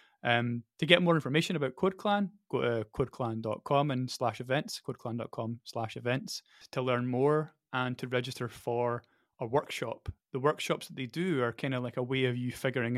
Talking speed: 180 wpm